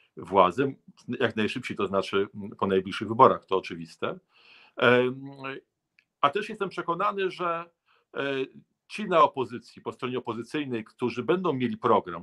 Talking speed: 125 wpm